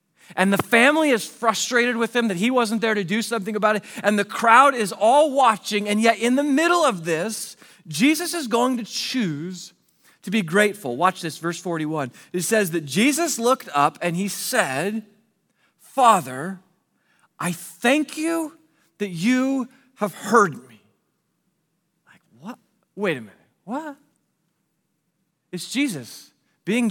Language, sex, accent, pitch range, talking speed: English, male, American, 190-275 Hz, 150 wpm